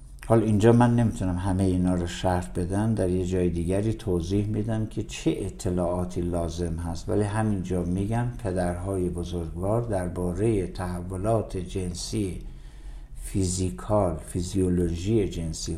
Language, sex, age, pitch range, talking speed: Persian, male, 60-79, 85-110 Hz, 120 wpm